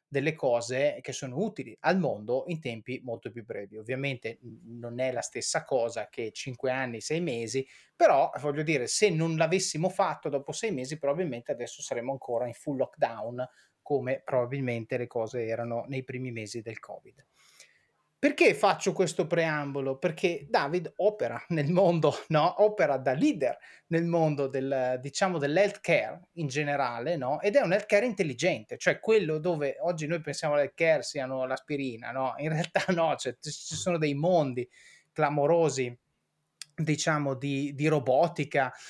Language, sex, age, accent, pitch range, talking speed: Italian, male, 30-49, native, 135-180 Hz, 155 wpm